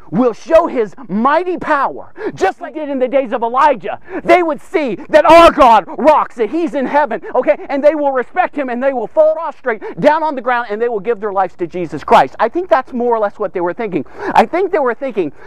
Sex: male